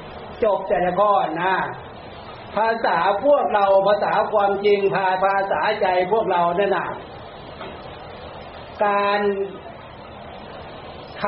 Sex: male